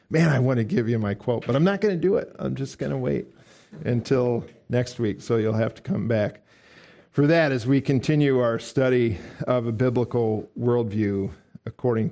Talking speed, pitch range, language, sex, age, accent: 205 wpm, 115-150 Hz, English, male, 50-69, American